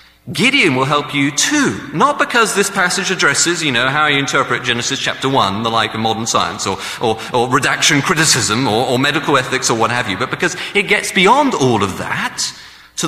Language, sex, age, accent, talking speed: English, male, 40-59, British, 205 wpm